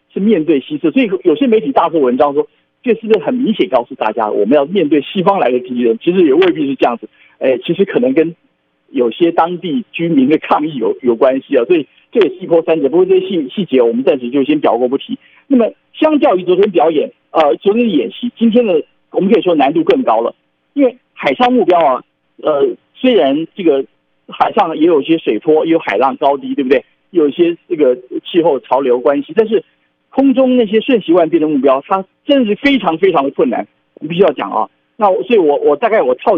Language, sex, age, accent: Chinese, male, 50-69, native